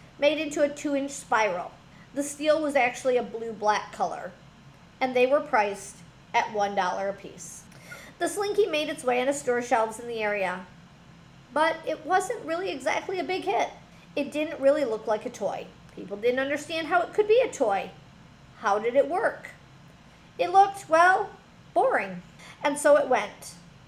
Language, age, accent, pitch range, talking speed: English, 40-59, American, 210-310 Hz, 175 wpm